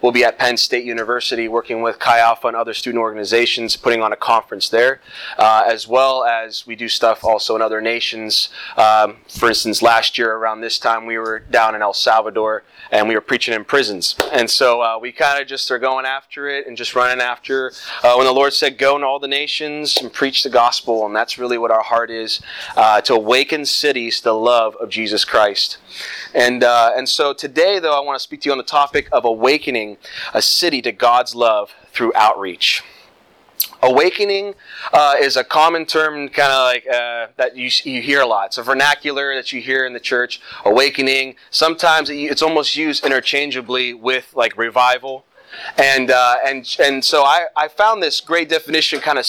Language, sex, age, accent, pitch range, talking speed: English, male, 20-39, American, 115-140 Hz, 200 wpm